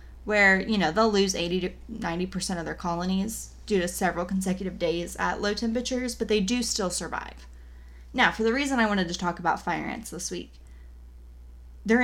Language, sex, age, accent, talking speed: English, female, 20-39, American, 185 wpm